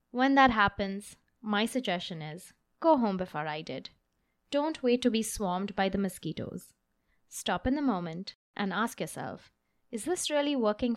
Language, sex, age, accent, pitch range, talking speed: English, female, 20-39, Indian, 195-280 Hz, 165 wpm